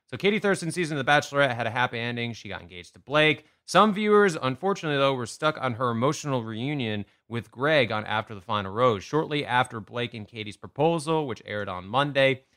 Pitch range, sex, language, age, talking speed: 110-145 Hz, male, English, 30-49, 205 wpm